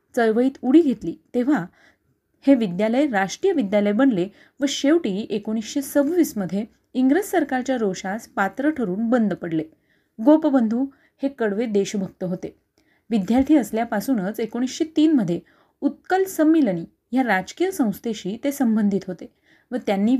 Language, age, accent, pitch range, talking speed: Marathi, 30-49, native, 205-275 Hz, 120 wpm